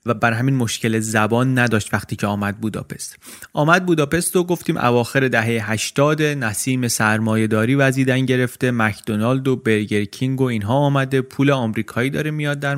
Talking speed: 155 wpm